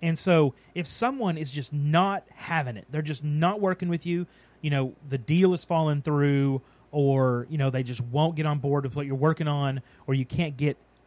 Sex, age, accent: male, 30-49, American